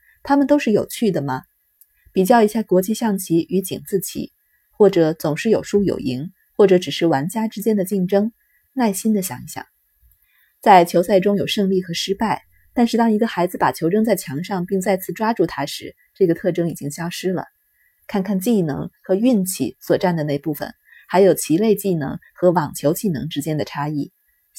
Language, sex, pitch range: Chinese, female, 170-225 Hz